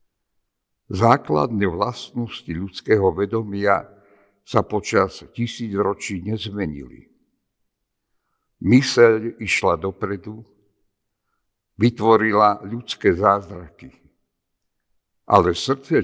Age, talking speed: 60-79, 60 wpm